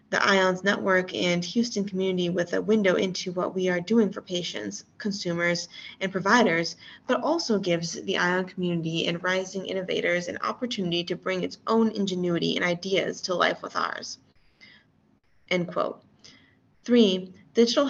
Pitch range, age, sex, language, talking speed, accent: 180-215 Hz, 20-39, female, English, 150 wpm, American